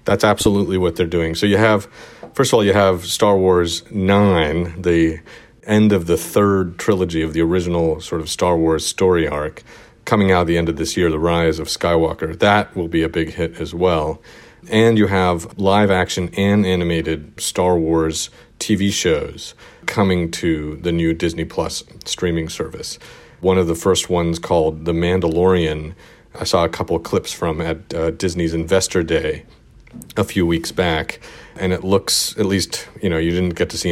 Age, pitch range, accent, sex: 40-59, 80-95 Hz, American, male